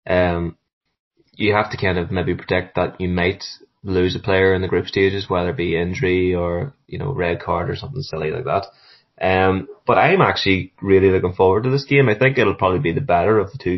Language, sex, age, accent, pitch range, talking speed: English, male, 20-39, Irish, 90-105 Hz, 225 wpm